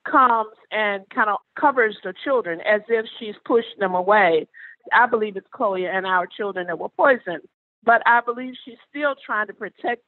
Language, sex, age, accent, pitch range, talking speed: English, female, 50-69, American, 195-240 Hz, 185 wpm